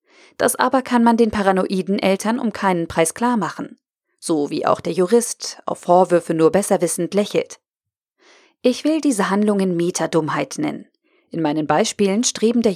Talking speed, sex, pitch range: 160 wpm, female, 175-265 Hz